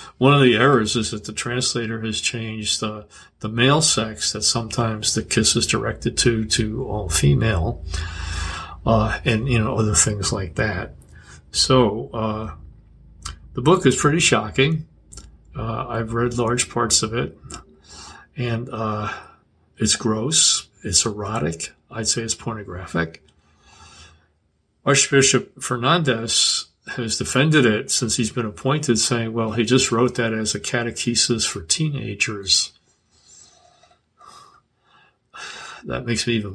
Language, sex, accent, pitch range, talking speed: English, male, American, 100-120 Hz, 135 wpm